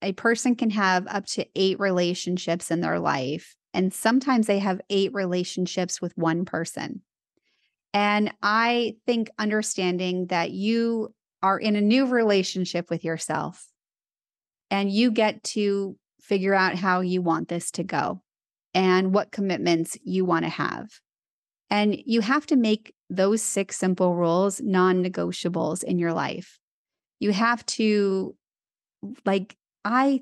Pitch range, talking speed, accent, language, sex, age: 180-220 Hz, 140 wpm, American, English, female, 30-49